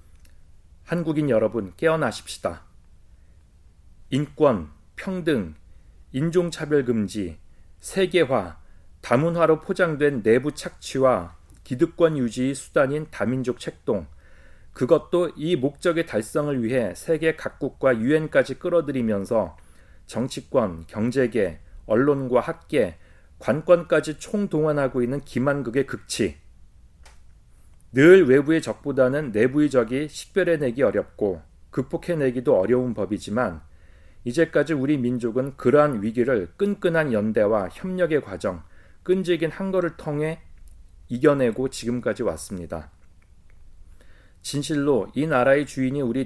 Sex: male